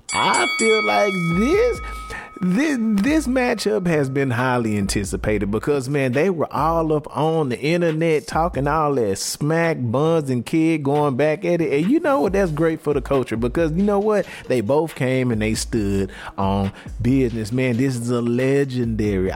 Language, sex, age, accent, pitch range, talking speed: English, male, 30-49, American, 115-170 Hz, 175 wpm